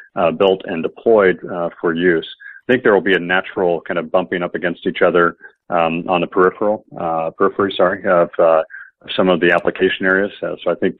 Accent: American